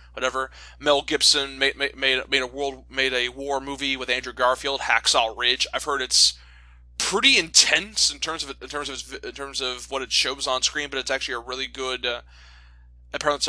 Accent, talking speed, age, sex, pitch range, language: American, 195 wpm, 20-39, male, 125-170 Hz, English